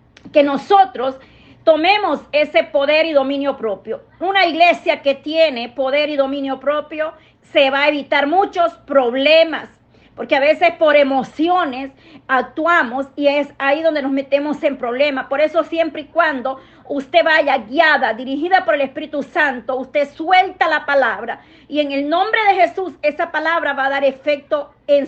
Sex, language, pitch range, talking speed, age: female, Spanish, 270-330 Hz, 160 wpm, 40-59